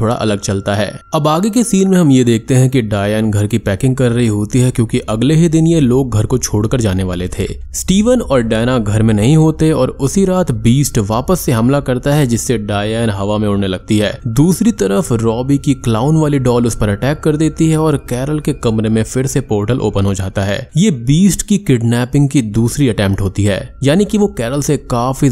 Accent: native